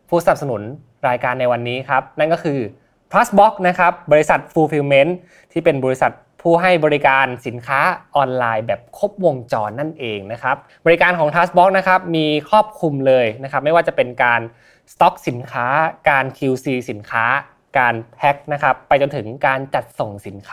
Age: 20-39